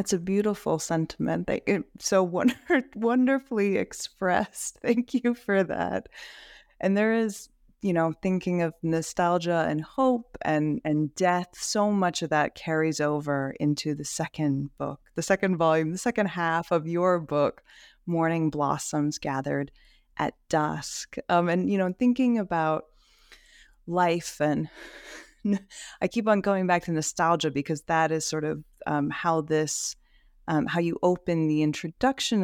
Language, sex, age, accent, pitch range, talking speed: English, female, 20-39, American, 155-195 Hz, 150 wpm